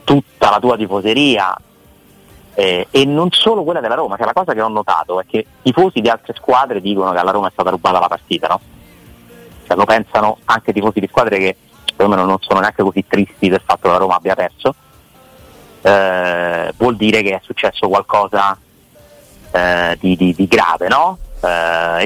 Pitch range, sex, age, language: 95-115 Hz, male, 30-49, Italian